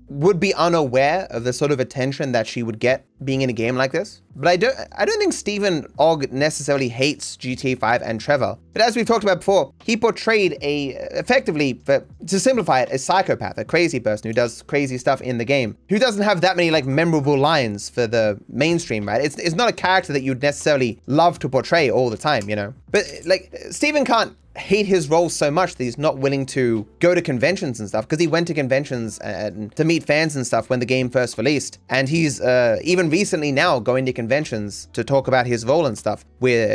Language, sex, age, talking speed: English, male, 20-39, 225 wpm